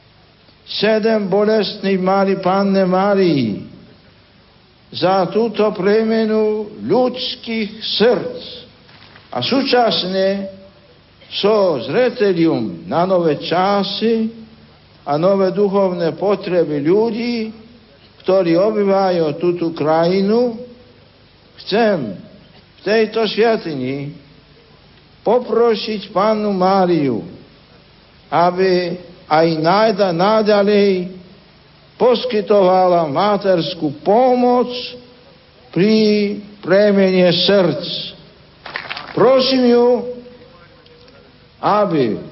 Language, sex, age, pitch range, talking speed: Slovak, male, 60-79, 180-220 Hz, 65 wpm